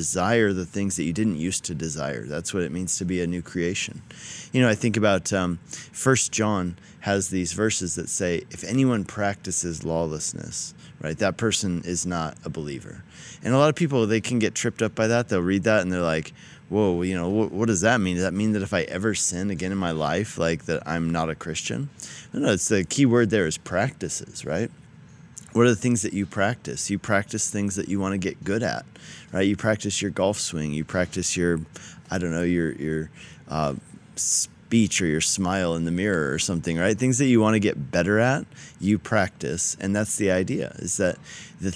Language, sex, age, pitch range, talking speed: English, male, 30-49, 85-110 Hz, 225 wpm